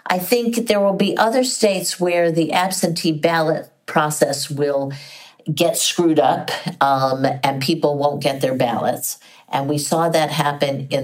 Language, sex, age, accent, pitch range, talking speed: English, female, 50-69, American, 150-200 Hz, 160 wpm